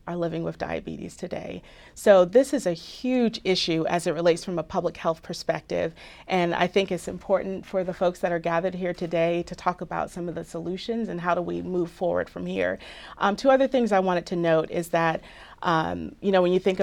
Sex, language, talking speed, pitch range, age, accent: female, English, 225 wpm, 165-185 Hz, 40-59, American